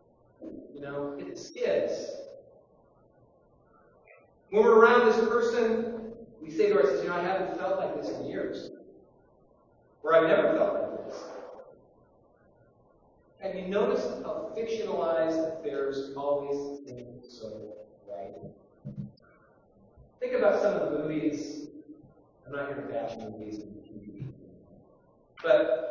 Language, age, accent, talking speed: English, 30-49, American, 120 wpm